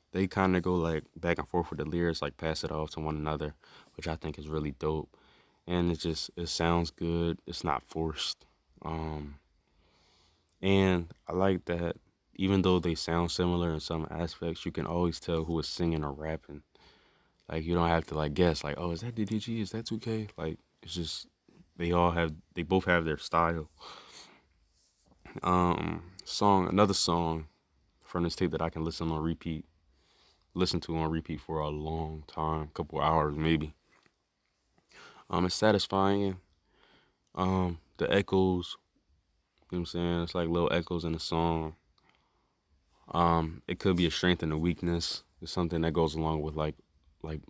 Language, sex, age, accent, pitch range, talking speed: English, male, 20-39, American, 80-85 Hz, 175 wpm